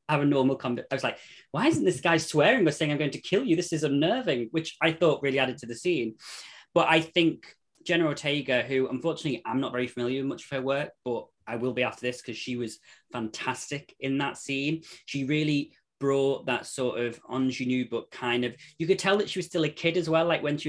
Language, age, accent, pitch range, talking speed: English, 20-39, British, 125-165 Hz, 240 wpm